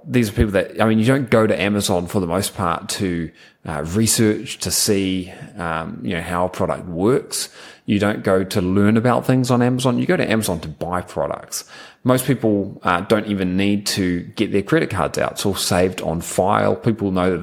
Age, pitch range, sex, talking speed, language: 20-39, 90-110 Hz, male, 215 wpm, English